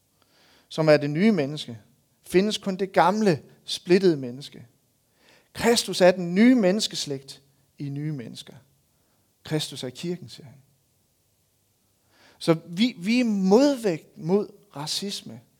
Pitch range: 140-205 Hz